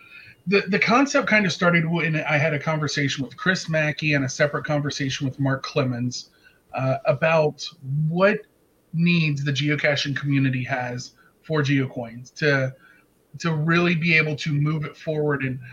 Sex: male